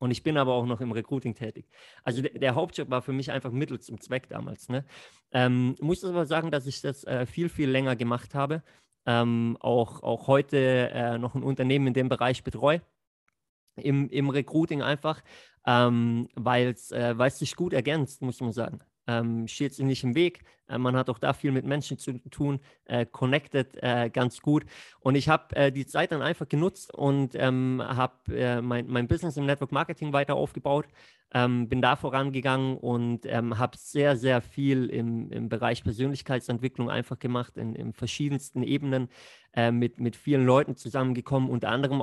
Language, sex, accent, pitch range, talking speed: German, male, German, 120-140 Hz, 185 wpm